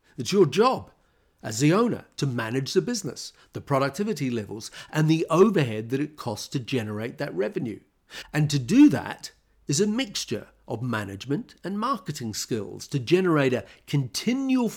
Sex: male